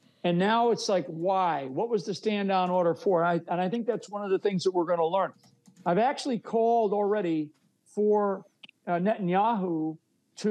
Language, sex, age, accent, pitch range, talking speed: English, male, 50-69, American, 175-220 Hz, 190 wpm